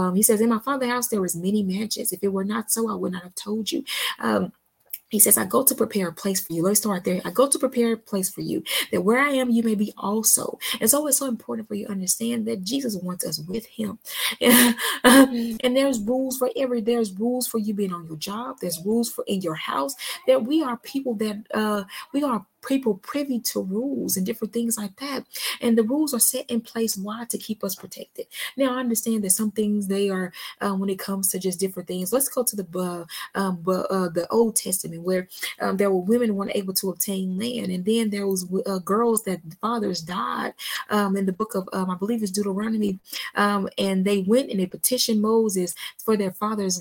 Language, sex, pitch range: English, female, 195-235 Hz